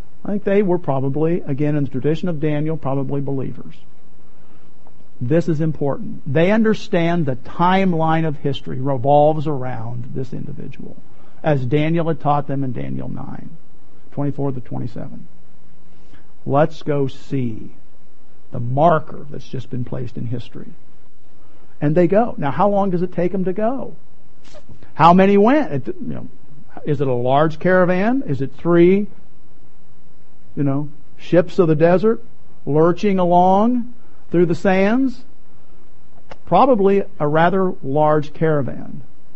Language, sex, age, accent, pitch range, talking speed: English, male, 50-69, American, 135-175 Hz, 135 wpm